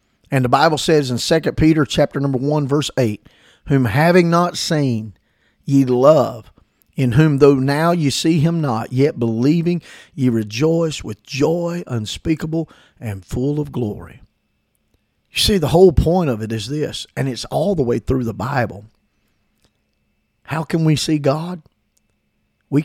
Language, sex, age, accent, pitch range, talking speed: English, male, 50-69, American, 110-150 Hz, 160 wpm